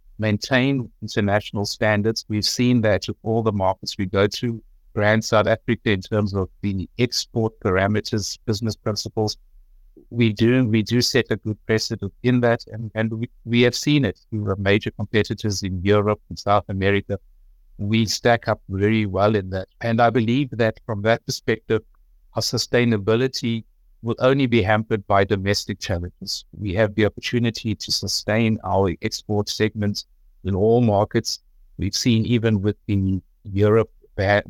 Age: 60-79